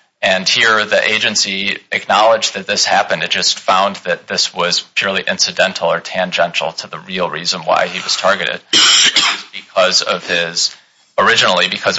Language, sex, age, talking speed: English, male, 30-49, 160 wpm